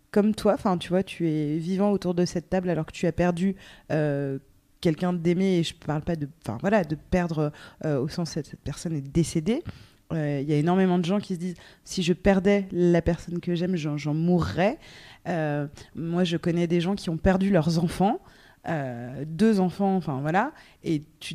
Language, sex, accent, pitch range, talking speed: French, female, French, 165-205 Hz, 215 wpm